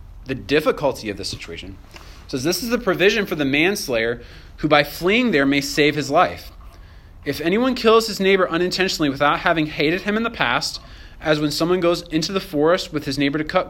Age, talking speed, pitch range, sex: 30-49, 205 wpm, 120-155 Hz, male